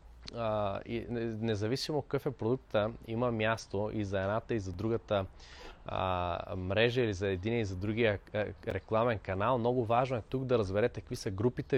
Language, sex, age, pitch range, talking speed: Bulgarian, male, 20-39, 100-120 Hz, 170 wpm